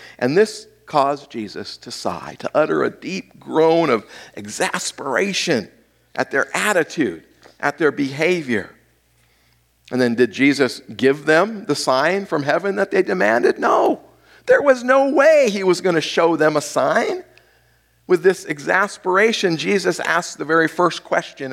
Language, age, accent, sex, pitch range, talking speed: English, 50-69, American, male, 140-215 Hz, 150 wpm